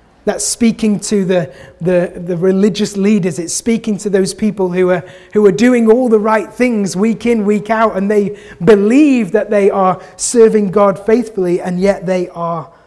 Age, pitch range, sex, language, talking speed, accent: 30-49, 185-225 Hz, male, English, 180 wpm, British